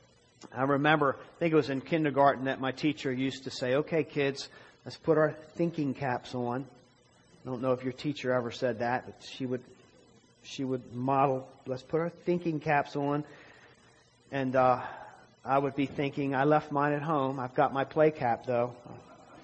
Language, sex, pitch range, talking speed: English, male, 125-155 Hz, 190 wpm